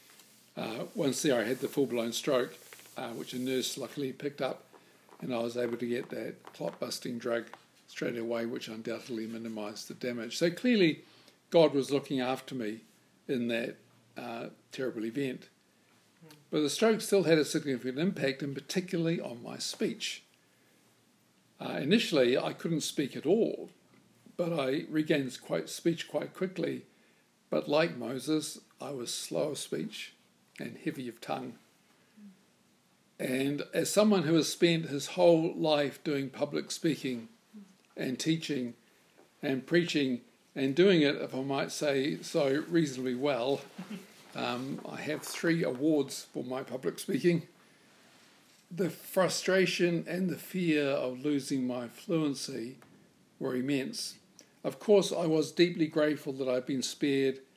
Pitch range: 130-170 Hz